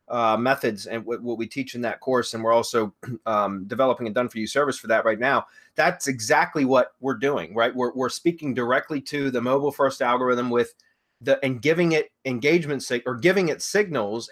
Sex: male